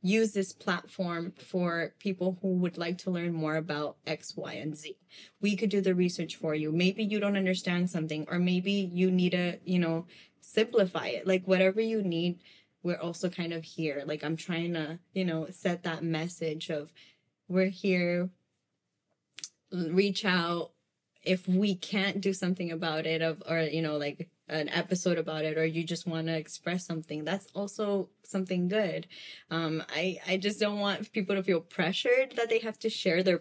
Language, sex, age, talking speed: English, female, 20-39, 185 wpm